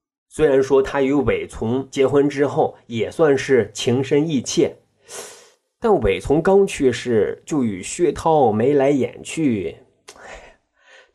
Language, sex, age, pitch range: Chinese, male, 30-49, 125-195 Hz